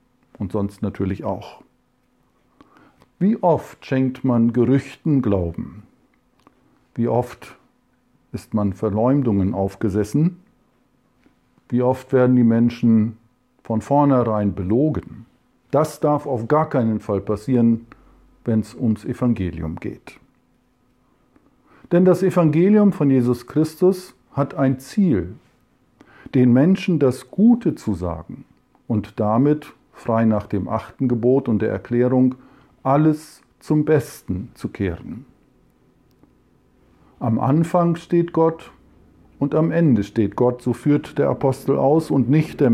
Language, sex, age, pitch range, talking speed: German, male, 50-69, 110-150 Hz, 115 wpm